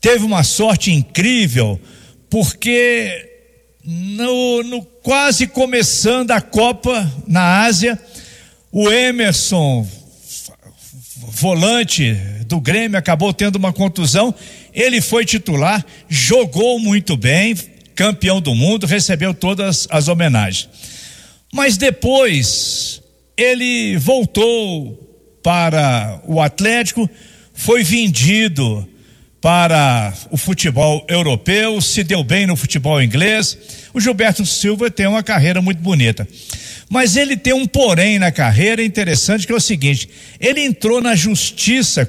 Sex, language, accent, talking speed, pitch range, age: male, Portuguese, Brazilian, 110 wpm, 145-220 Hz, 60-79